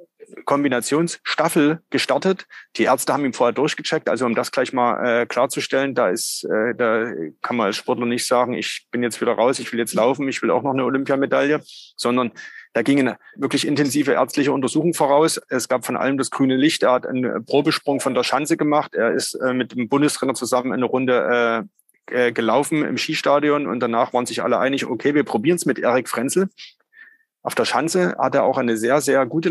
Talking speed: 205 wpm